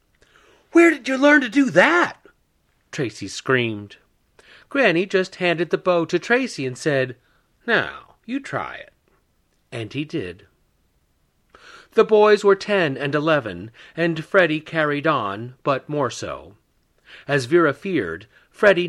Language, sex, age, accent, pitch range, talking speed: English, male, 40-59, American, 125-175 Hz, 135 wpm